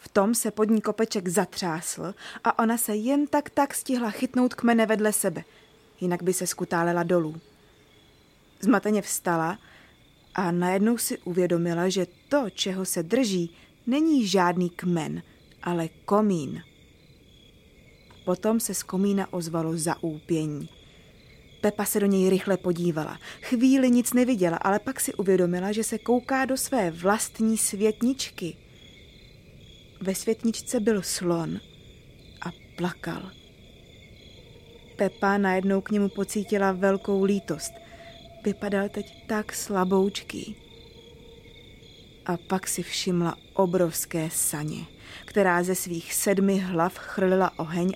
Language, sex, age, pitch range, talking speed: English, female, 20-39, 175-220 Hz, 120 wpm